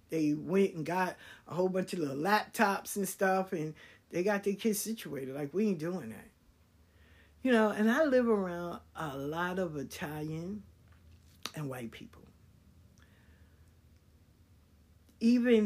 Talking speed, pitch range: 140 wpm, 120-195 Hz